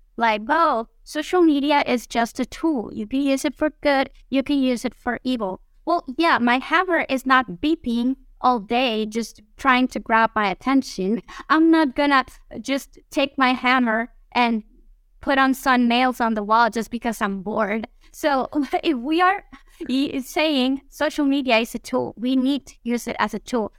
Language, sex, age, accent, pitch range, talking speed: English, female, 20-39, American, 225-275 Hz, 180 wpm